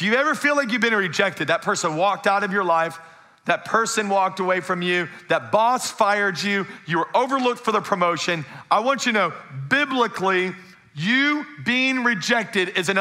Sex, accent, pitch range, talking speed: male, American, 180-225 Hz, 190 wpm